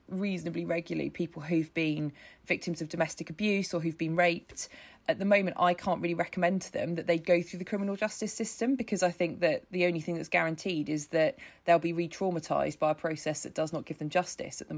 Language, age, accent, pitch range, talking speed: English, 20-39, British, 165-195 Hz, 225 wpm